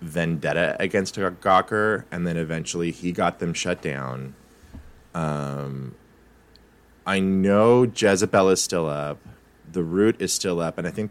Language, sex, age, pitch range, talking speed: English, male, 20-39, 80-105 Hz, 140 wpm